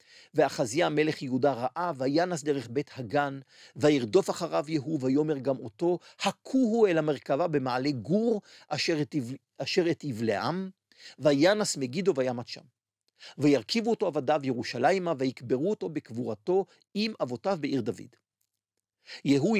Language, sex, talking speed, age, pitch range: Hebrew, male, 115 wpm, 50-69, 140-200 Hz